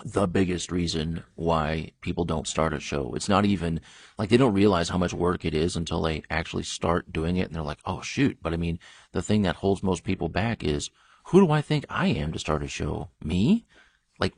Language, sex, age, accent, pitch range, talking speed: English, male, 40-59, American, 85-120 Hz, 230 wpm